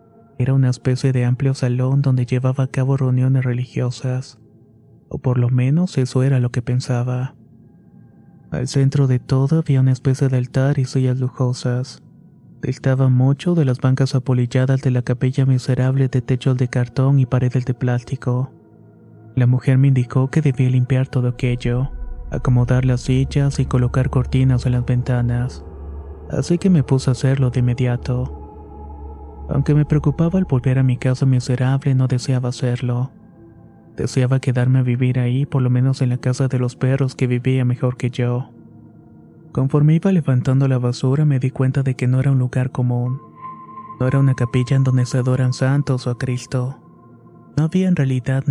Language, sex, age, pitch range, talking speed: Spanish, male, 30-49, 125-135 Hz, 170 wpm